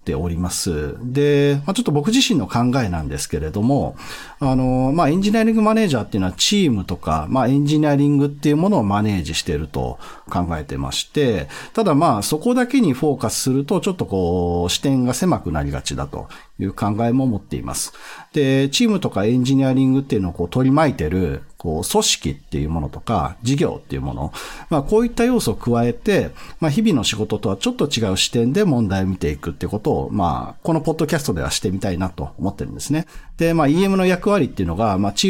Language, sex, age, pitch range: Japanese, male, 50-69, 90-150 Hz